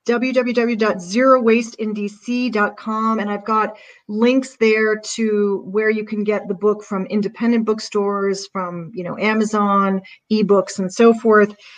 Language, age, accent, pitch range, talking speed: English, 40-59, American, 195-230 Hz, 120 wpm